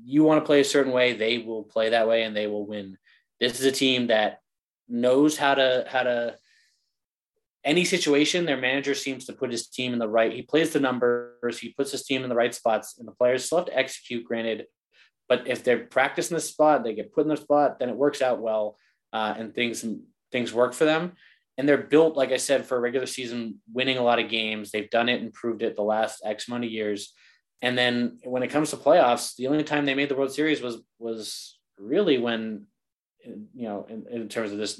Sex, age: male, 20-39